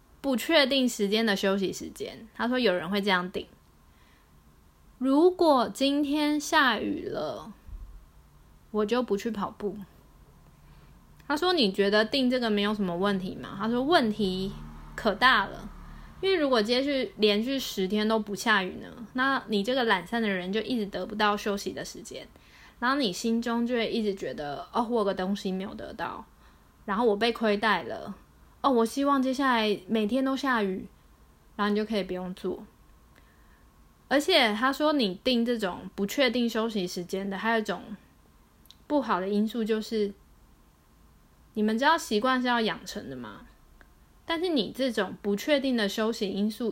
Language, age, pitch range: Chinese, 20-39, 195-245 Hz